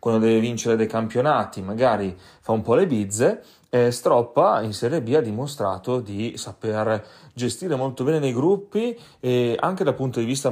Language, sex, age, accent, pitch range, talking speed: Italian, male, 30-49, native, 105-125 Hz, 175 wpm